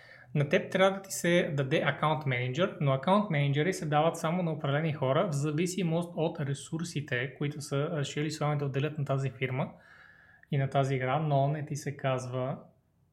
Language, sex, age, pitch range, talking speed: Bulgarian, male, 20-39, 140-175 Hz, 185 wpm